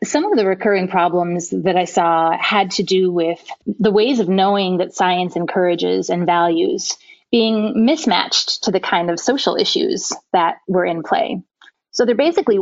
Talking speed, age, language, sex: 170 wpm, 30-49, English, female